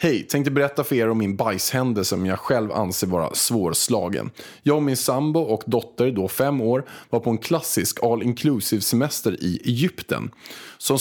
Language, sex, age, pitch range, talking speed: Swedish, male, 20-39, 115-150 Hz, 175 wpm